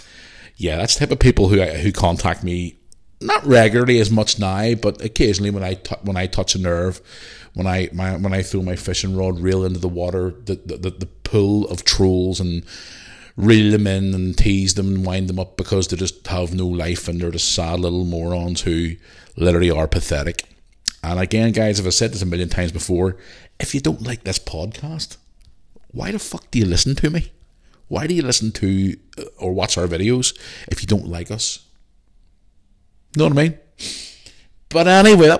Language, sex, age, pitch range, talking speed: English, male, 50-69, 90-110 Hz, 200 wpm